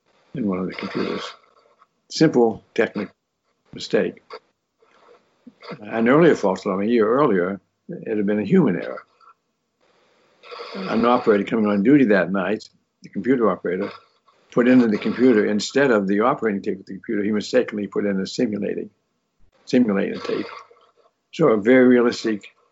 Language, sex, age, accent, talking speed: English, male, 60-79, American, 145 wpm